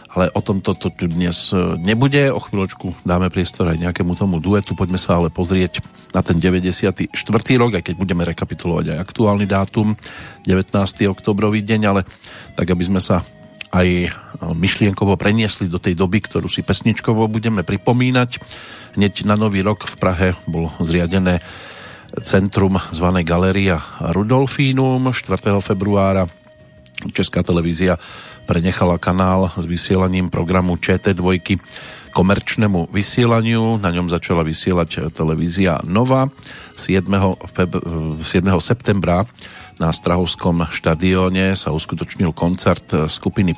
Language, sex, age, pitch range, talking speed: Slovak, male, 40-59, 90-105 Hz, 125 wpm